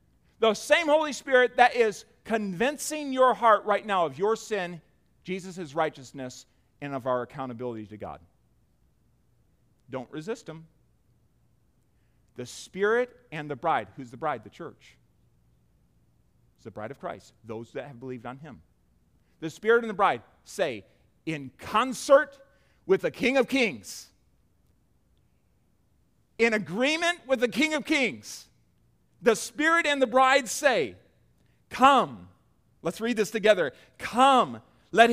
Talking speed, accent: 135 wpm, American